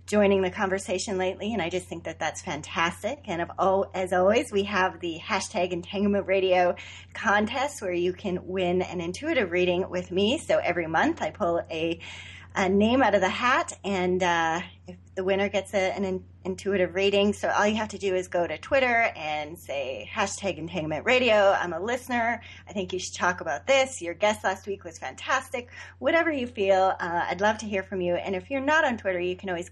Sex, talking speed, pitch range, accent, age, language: female, 210 wpm, 160-200 Hz, American, 30-49, English